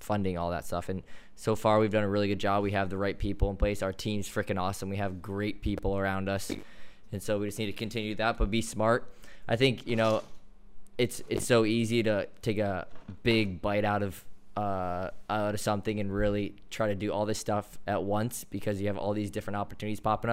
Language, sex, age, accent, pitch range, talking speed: English, male, 20-39, American, 100-110 Hz, 230 wpm